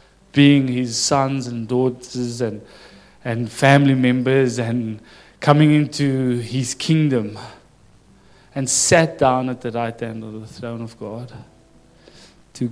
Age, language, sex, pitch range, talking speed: 20-39, English, male, 115-140 Hz, 125 wpm